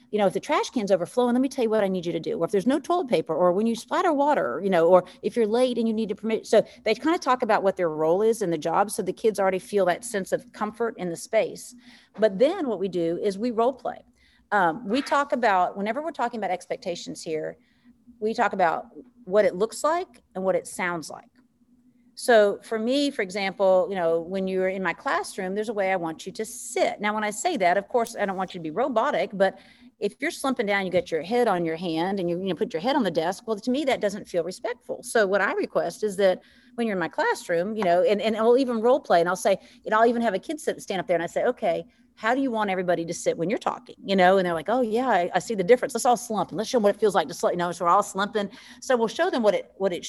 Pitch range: 185-245 Hz